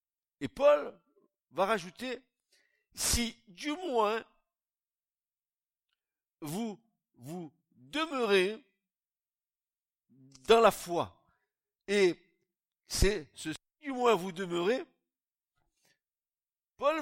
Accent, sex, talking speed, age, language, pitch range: French, male, 80 wpm, 60-79, French, 145-230 Hz